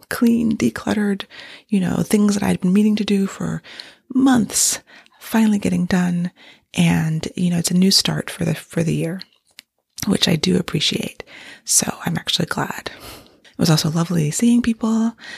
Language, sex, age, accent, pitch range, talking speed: English, female, 20-39, American, 180-230 Hz, 165 wpm